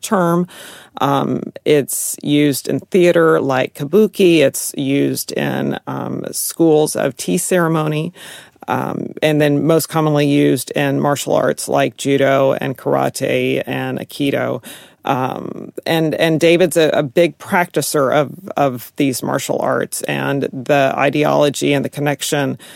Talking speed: 130 wpm